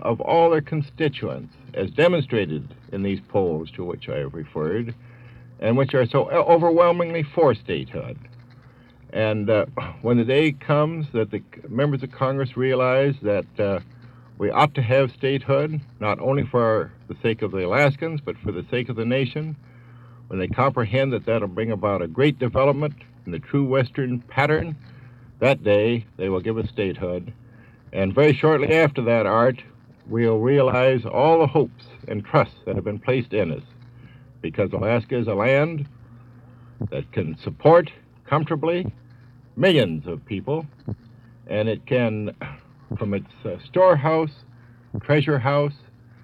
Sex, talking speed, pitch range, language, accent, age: male, 150 wpm, 115-140 Hz, English, American, 60-79